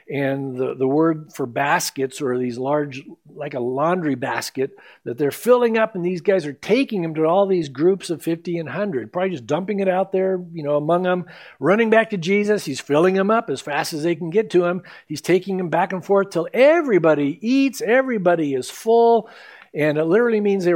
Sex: male